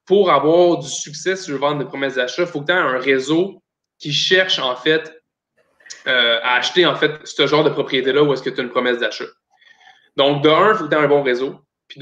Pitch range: 135-175 Hz